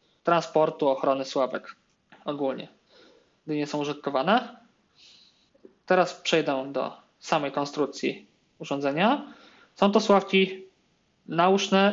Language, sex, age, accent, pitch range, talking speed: Polish, male, 20-39, native, 150-200 Hz, 90 wpm